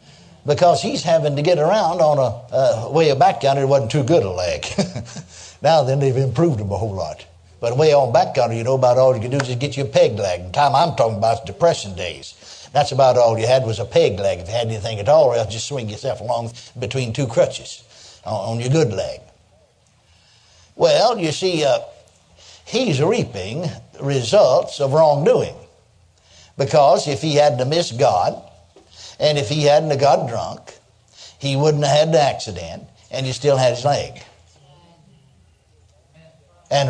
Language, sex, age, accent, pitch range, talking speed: English, male, 60-79, American, 115-165 Hz, 190 wpm